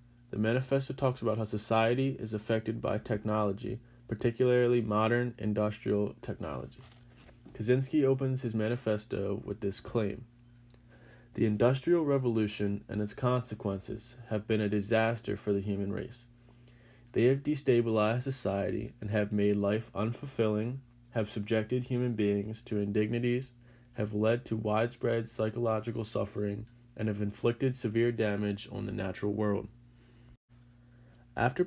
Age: 20-39